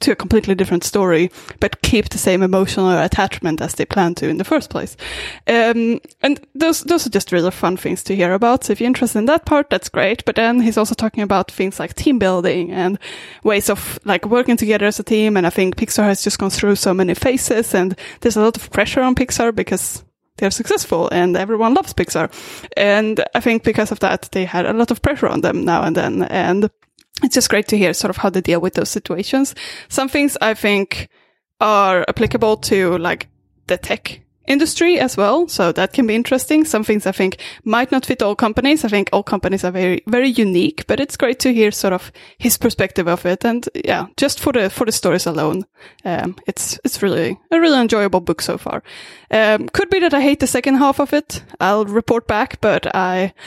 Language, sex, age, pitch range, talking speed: English, female, 10-29, 190-250 Hz, 220 wpm